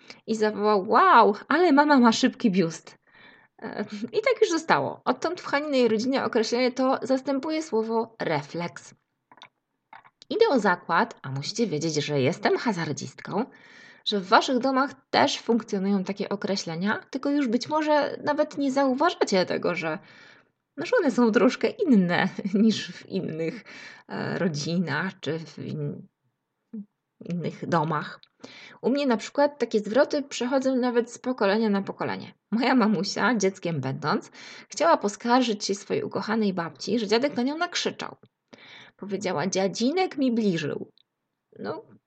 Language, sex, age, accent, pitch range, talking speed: Polish, female, 20-39, native, 195-265 Hz, 135 wpm